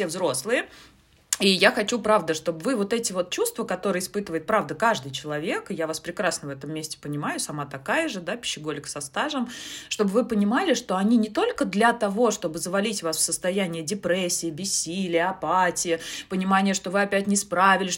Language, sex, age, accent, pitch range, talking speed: Russian, female, 20-39, native, 180-220 Hz, 180 wpm